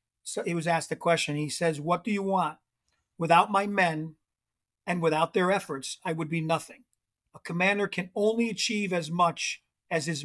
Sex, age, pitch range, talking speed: male, 50-69, 160-195 Hz, 185 wpm